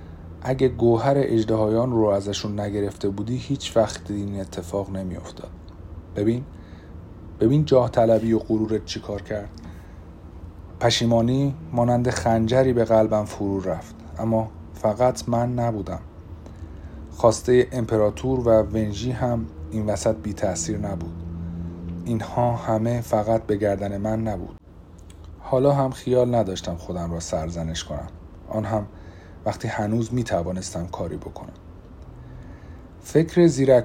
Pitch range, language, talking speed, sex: 85-120 Hz, Persian, 115 wpm, male